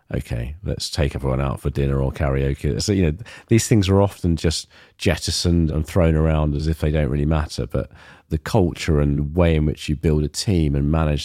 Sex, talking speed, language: male, 215 wpm, English